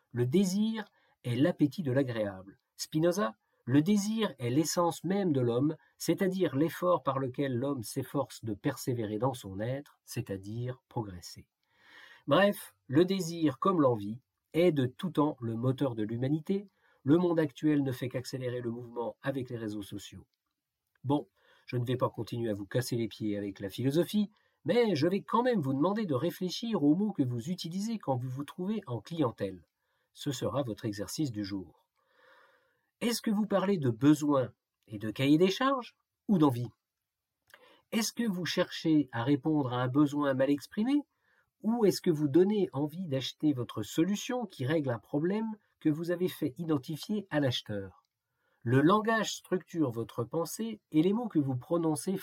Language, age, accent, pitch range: French, 50-69, French, 120-180 Hz